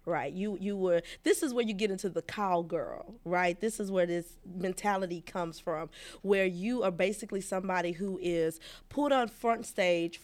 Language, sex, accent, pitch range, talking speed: English, female, American, 180-225 Hz, 180 wpm